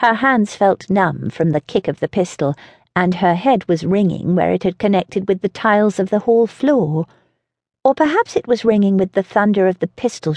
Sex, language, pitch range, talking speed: female, English, 175-265 Hz, 215 wpm